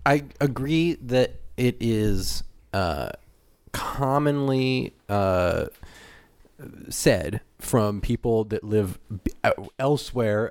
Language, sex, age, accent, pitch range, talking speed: English, male, 30-49, American, 100-125 Hz, 80 wpm